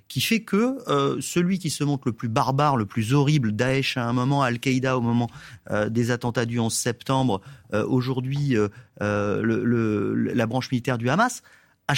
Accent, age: French, 30-49